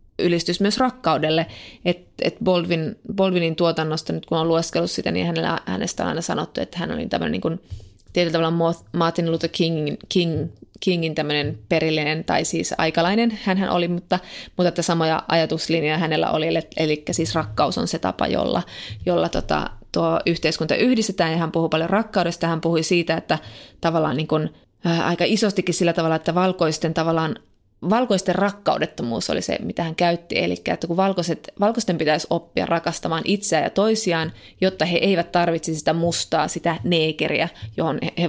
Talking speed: 160 wpm